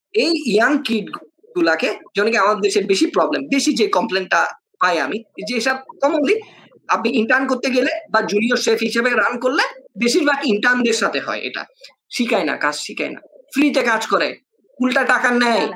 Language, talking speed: Bengali, 85 wpm